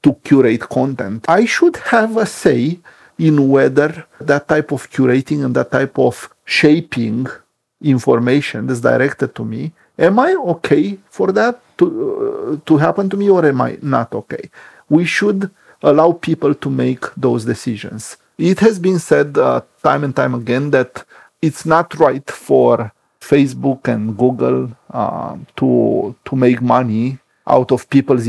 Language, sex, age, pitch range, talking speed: English, male, 40-59, 120-150 Hz, 155 wpm